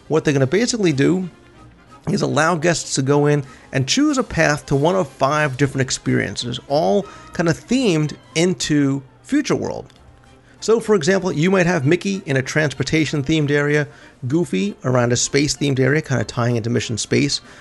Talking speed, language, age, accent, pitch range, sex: 175 wpm, English, 40-59, American, 125-165 Hz, male